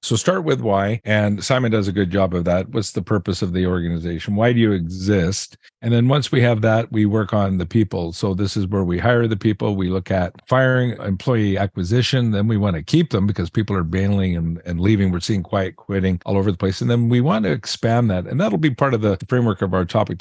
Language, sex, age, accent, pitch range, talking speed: English, male, 50-69, American, 95-115 Hz, 250 wpm